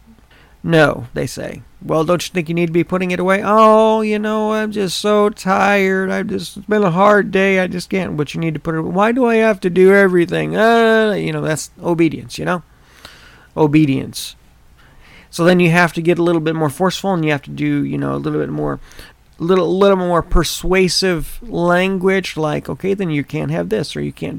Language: English